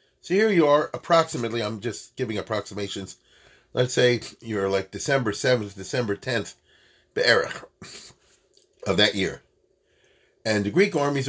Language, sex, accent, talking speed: English, male, American, 140 wpm